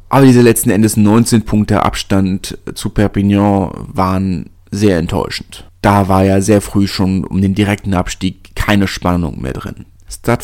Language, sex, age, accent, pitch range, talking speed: German, male, 30-49, German, 95-110 Hz, 155 wpm